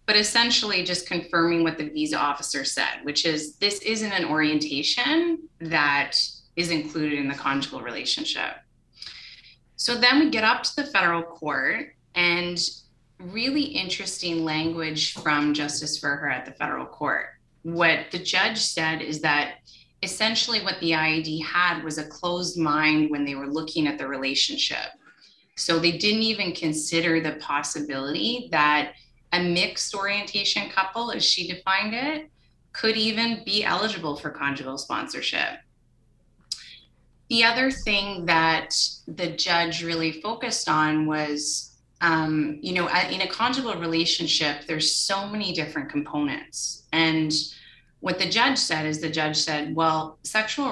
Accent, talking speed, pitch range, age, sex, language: American, 140 wpm, 150-200 Hz, 20-39, female, English